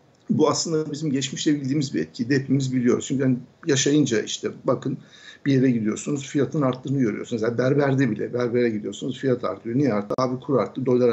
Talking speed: 180 wpm